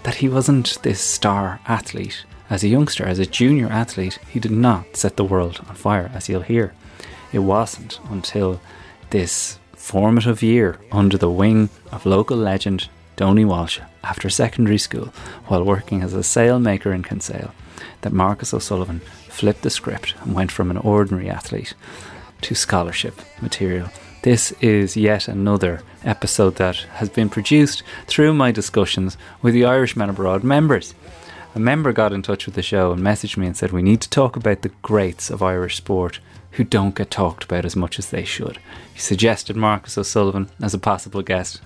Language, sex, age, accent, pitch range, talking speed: English, male, 30-49, Irish, 90-110 Hz, 175 wpm